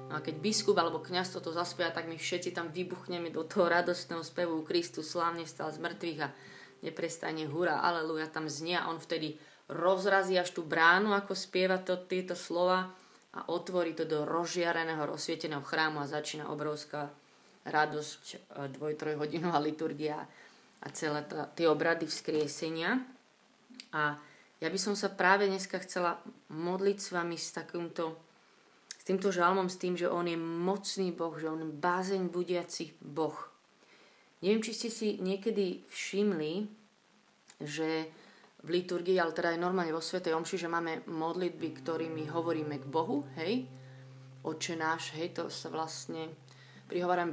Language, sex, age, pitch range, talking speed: Slovak, female, 30-49, 155-180 Hz, 145 wpm